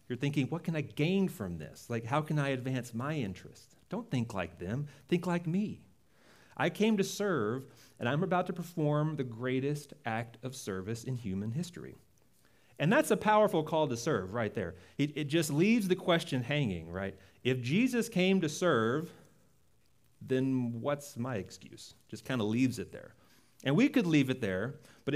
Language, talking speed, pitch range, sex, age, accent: English, 185 wpm, 115-160 Hz, male, 40-59, American